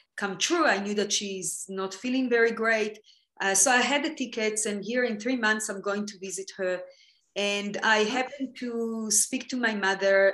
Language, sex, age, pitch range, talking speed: English, female, 30-49, 185-225 Hz, 195 wpm